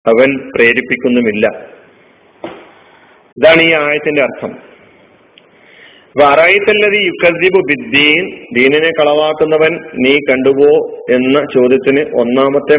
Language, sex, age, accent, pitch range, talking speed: Malayalam, male, 40-59, native, 125-180 Hz, 55 wpm